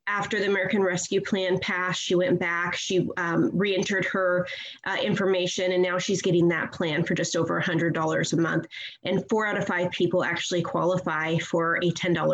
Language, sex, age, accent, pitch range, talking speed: English, female, 30-49, American, 170-195 Hz, 185 wpm